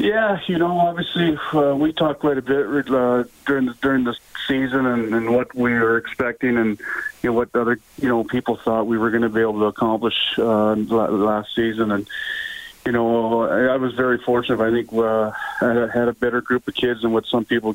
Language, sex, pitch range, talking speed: English, male, 110-125 Hz, 210 wpm